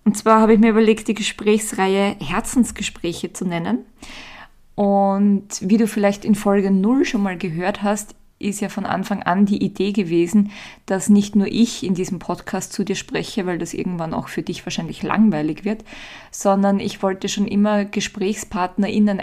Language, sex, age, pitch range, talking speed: German, female, 20-39, 185-215 Hz, 170 wpm